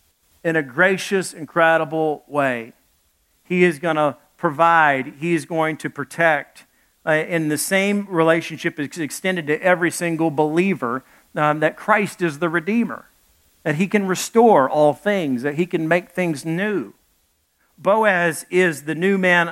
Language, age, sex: English, 50-69, male